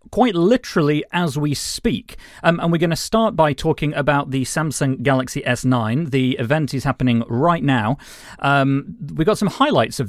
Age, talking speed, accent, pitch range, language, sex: 30-49, 170 wpm, British, 115-150 Hz, English, male